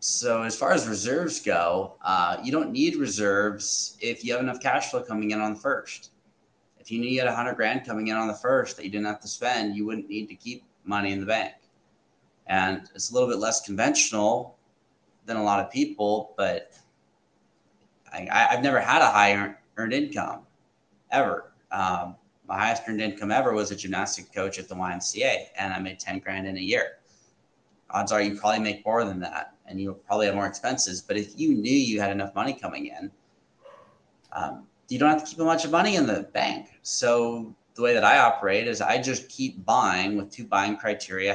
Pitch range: 95-120 Hz